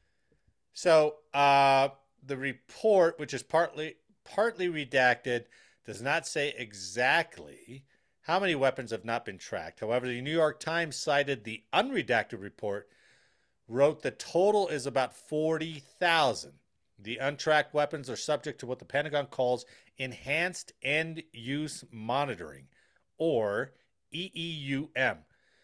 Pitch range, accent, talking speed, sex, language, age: 120-160 Hz, American, 120 wpm, male, English, 40-59